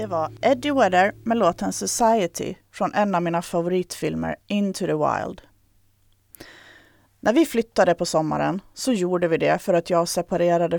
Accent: native